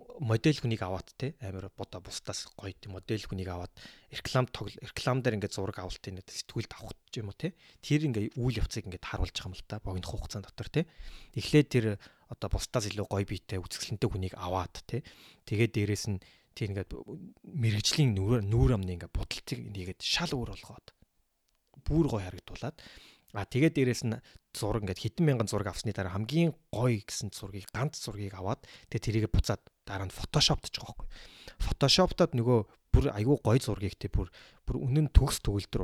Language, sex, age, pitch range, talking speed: English, male, 30-49, 95-125 Hz, 100 wpm